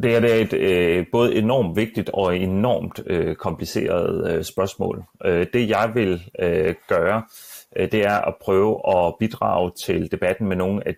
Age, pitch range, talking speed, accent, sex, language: 30-49, 90-120 Hz, 135 wpm, native, male, Danish